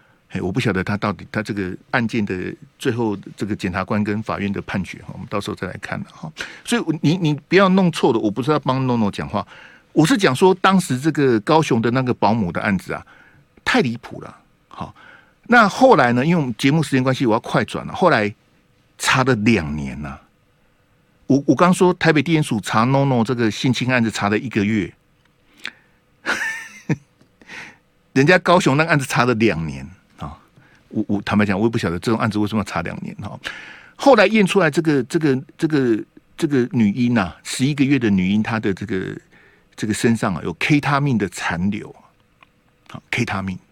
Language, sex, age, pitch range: Chinese, male, 50-69, 105-160 Hz